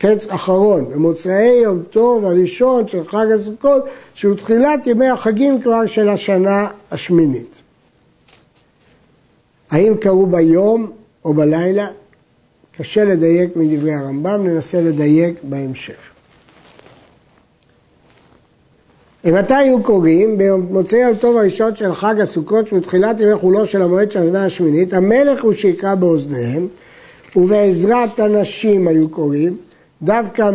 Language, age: Hebrew, 60-79